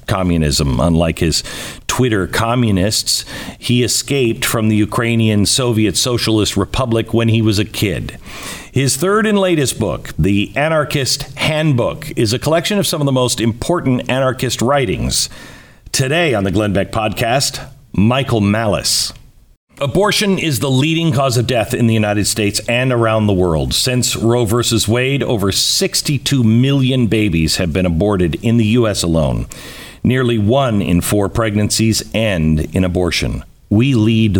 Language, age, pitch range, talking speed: English, 50-69, 100-130 Hz, 150 wpm